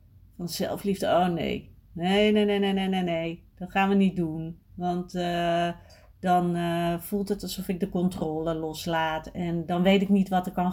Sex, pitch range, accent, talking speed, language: female, 135-190 Hz, Dutch, 190 wpm, Dutch